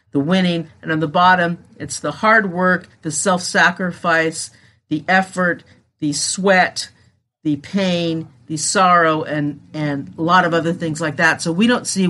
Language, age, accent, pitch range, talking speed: English, 50-69, American, 150-205 Hz, 165 wpm